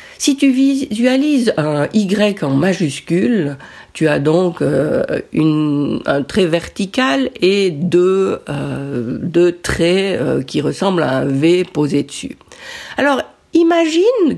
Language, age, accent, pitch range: French, 50-69, French, 165-255 Hz